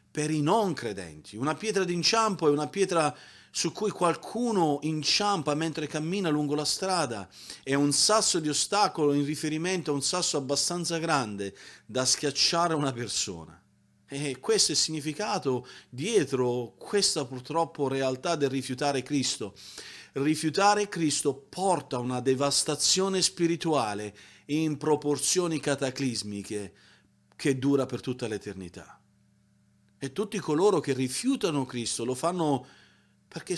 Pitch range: 130-175 Hz